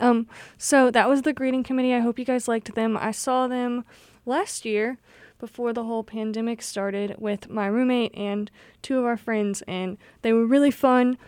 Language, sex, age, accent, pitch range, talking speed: English, female, 20-39, American, 210-250 Hz, 190 wpm